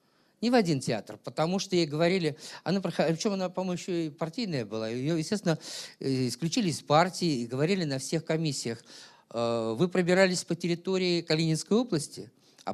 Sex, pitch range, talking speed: male, 125-180 Hz, 155 wpm